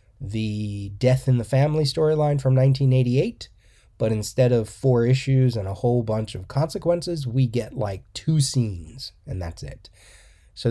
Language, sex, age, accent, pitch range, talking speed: English, male, 20-39, American, 105-130 Hz, 155 wpm